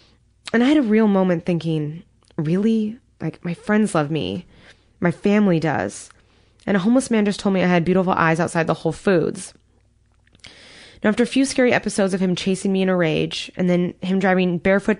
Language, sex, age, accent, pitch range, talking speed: English, female, 20-39, American, 155-195 Hz, 195 wpm